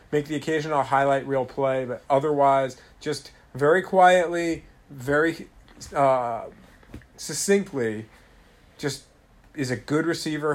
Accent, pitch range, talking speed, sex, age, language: American, 125-150 Hz, 110 wpm, male, 40-59, English